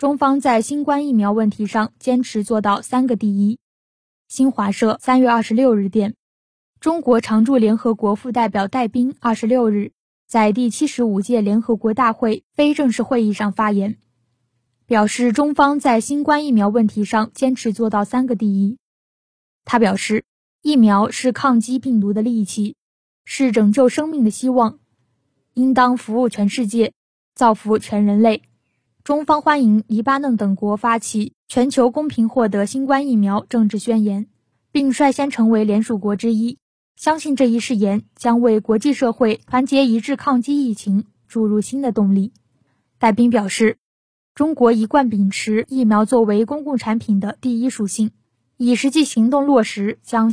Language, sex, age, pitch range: Chinese, female, 10-29, 210-255 Hz